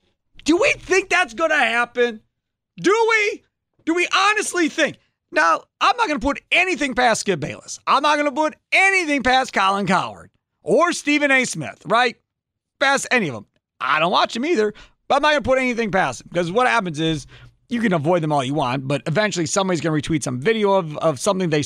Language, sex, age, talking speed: English, male, 40-59, 215 wpm